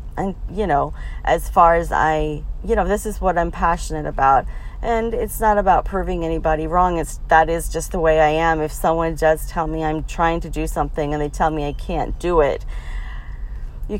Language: English